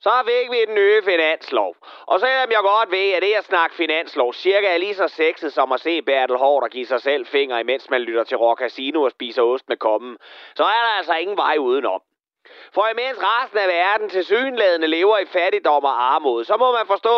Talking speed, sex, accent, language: 230 wpm, male, native, Danish